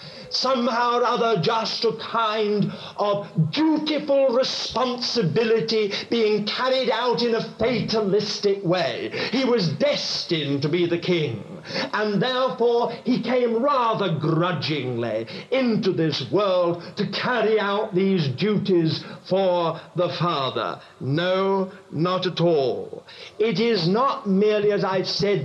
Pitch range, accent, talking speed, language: 185-255 Hz, British, 120 wpm, English